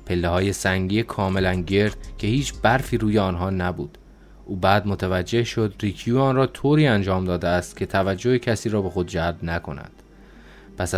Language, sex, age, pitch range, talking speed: Persian, male, 20-39, 95-115 Hz, 170 wpm